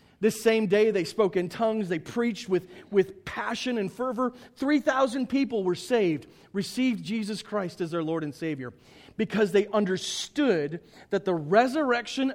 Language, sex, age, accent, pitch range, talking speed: English, male, 40-59, American, 175-240 Hz, 155 wpm